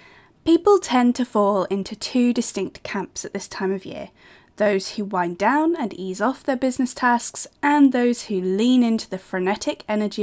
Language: English